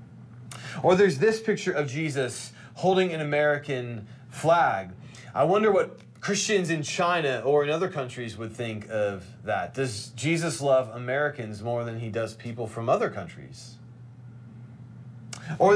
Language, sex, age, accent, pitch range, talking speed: English, male, 30-49, American, 120-165 Hz, 140 wpm